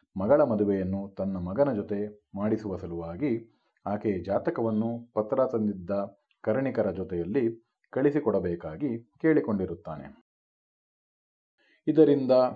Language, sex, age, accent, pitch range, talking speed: Kannada, male, 40-59, native, 100-125 Hz, 75 wpm